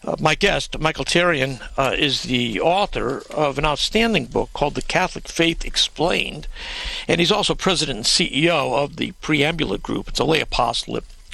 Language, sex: English, male